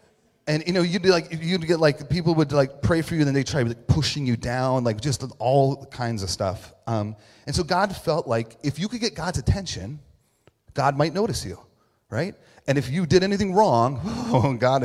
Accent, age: American, 30-49